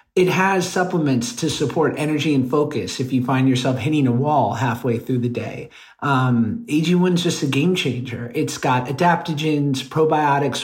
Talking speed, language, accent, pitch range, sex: 165 wpm, English, American, 125-165 Hz, male